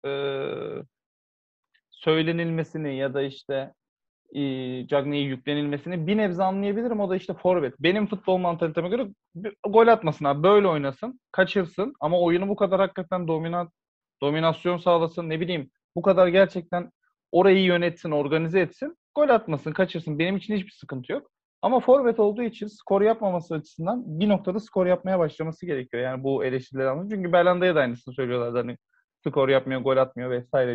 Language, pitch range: Turkish, 140-195 Hz